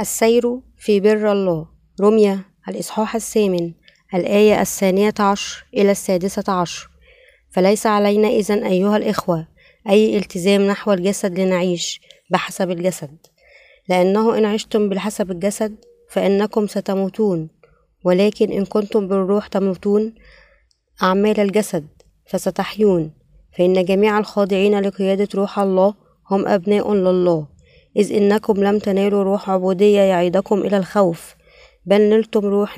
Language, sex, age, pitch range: Arabic, female, 20-39, 190-215 Hz